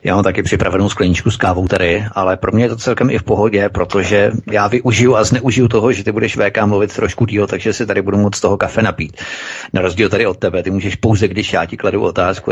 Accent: native